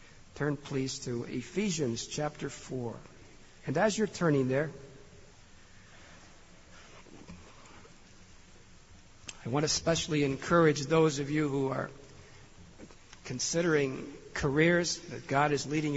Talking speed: 100 wpm